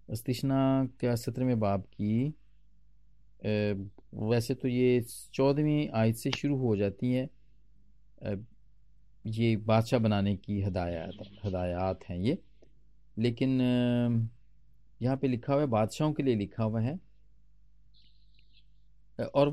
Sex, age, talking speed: male, 40-59, 115 wpm